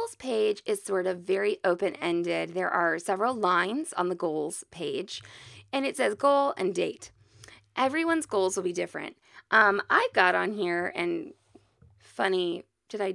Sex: female